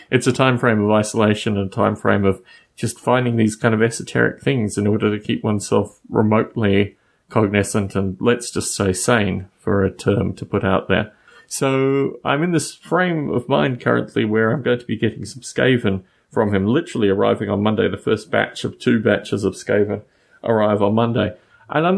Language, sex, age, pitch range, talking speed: English, male, 30-49, 100-125 Hz, 195 wpm